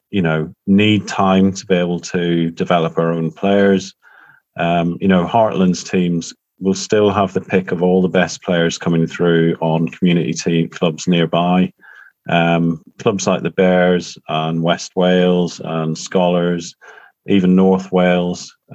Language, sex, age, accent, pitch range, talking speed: English, male, 30-49, British, 85-95 Hz, 150 wpm